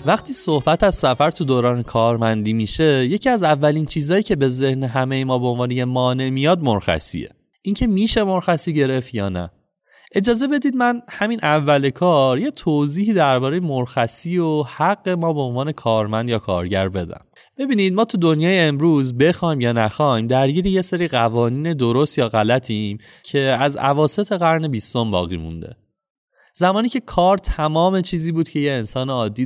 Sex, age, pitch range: male, 30-49, 120-175 Hz